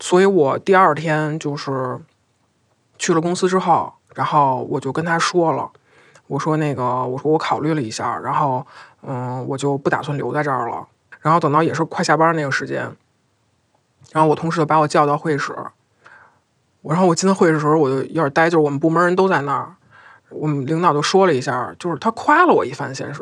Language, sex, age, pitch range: Chinese, male, 20-39, 150-210 Hz